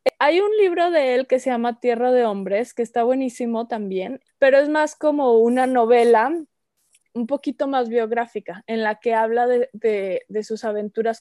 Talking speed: 175 wpm